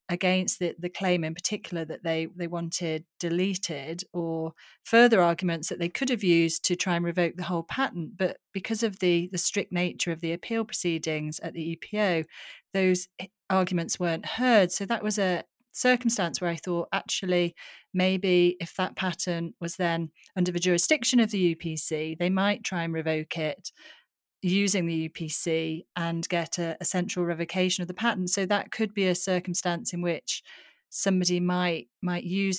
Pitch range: 165-190 Hz